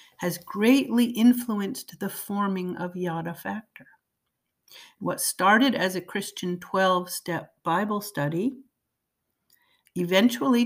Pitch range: 165-235 Hz